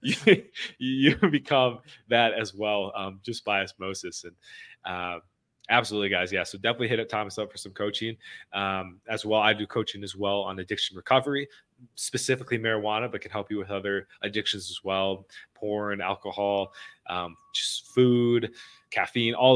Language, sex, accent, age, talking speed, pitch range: English, male, American, 20-39, 165 wpm, 95-115 Hz